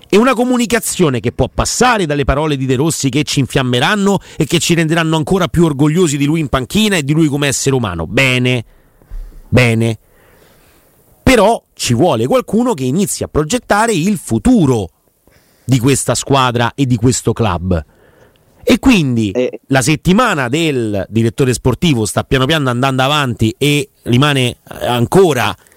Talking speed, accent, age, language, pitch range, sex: 150 wpm, native, 30-49, Italian, 125-175 Hz, male